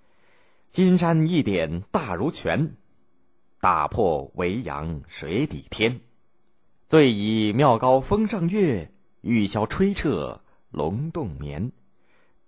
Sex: male